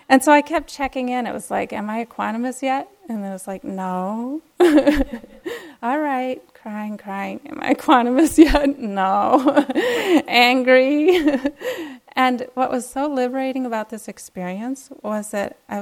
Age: 30-49